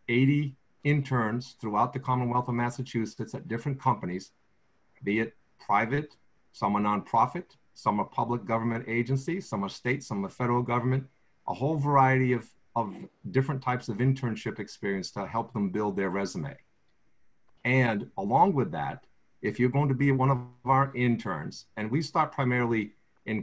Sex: male